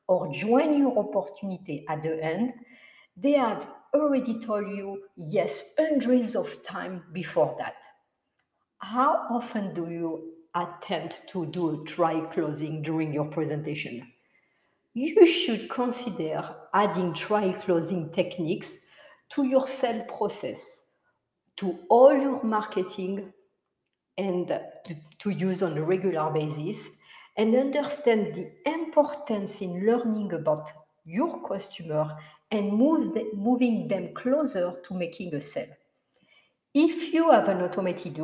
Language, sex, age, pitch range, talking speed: English, female, 60-79, 165-250 Hz, 120 wpm